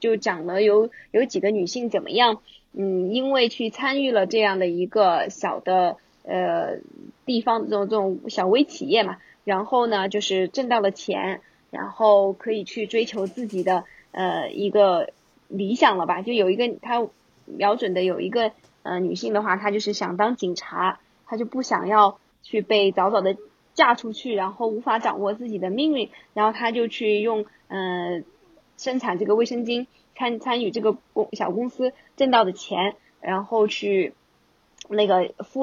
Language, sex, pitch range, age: Chinese, female, 195-235 Hz, 20-39